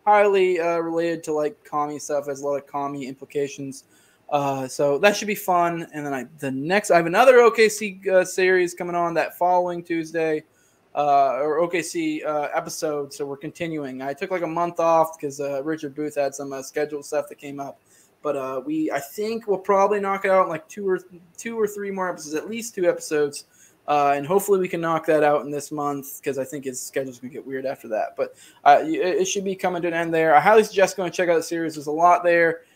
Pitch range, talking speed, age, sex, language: 145-185 Hz, 240 wpm, 20-39, male, English